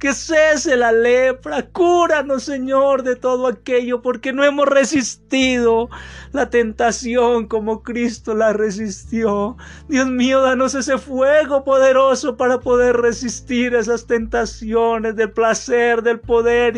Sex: male